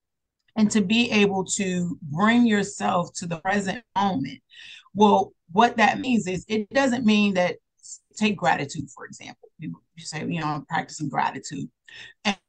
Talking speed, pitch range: 155 wpm, 175-210 Hz